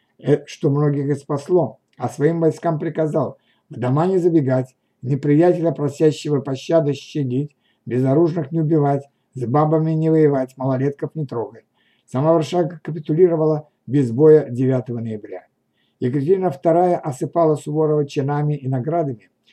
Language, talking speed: Russian, 125 wpm